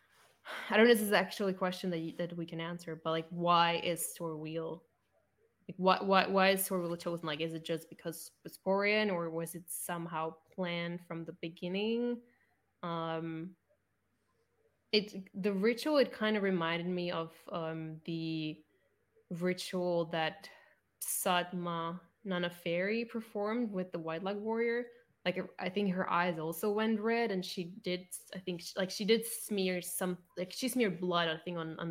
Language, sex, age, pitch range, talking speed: English, female, 10-29, 170-210 Hz, 170 wpm